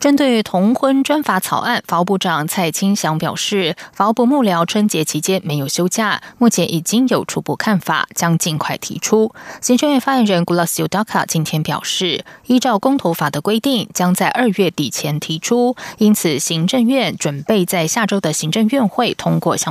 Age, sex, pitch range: 20-39, female, 165-230 Hz